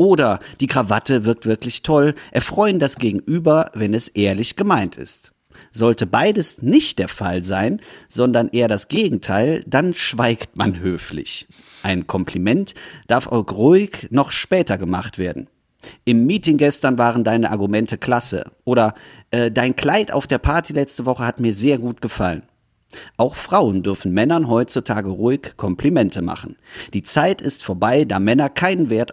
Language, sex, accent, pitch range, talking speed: German, male, German, 100-140 Hz, 150 wpm